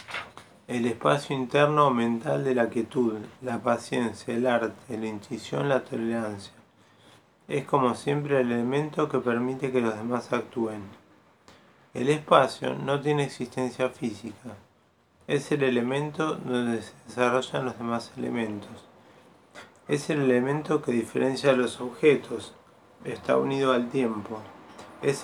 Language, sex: Spanish, male